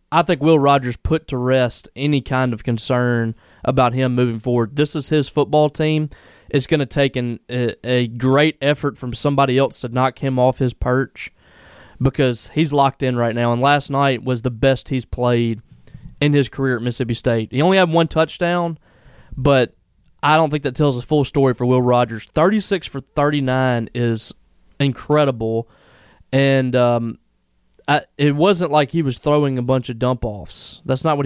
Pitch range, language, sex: 120-145 Hz, English, male